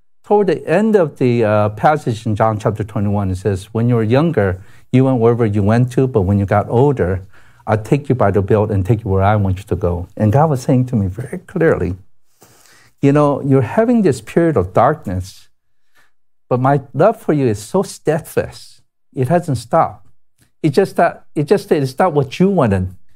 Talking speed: 200 wpm